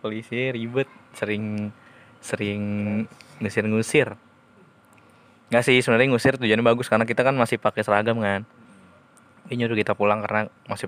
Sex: male